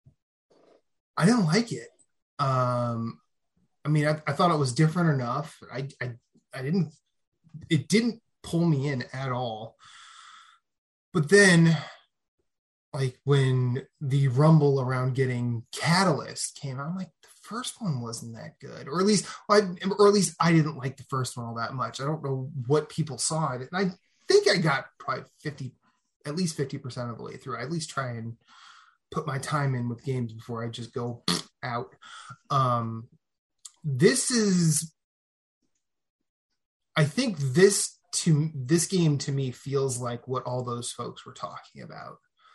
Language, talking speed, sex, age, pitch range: English, 165 wpm, male, 20-39, 125-165 Hz